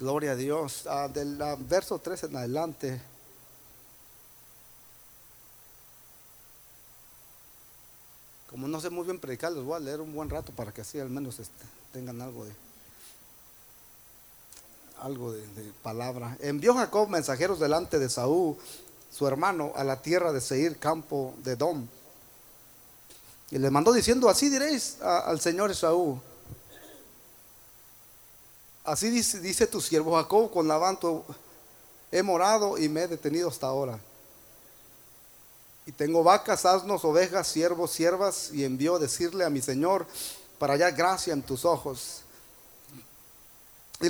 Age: 40-59